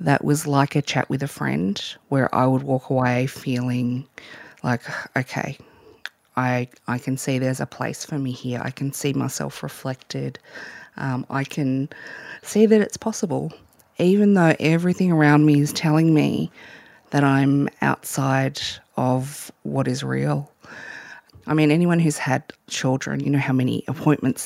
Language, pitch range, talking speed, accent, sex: English, 130-160 Hz, 155 wpm, Australian, female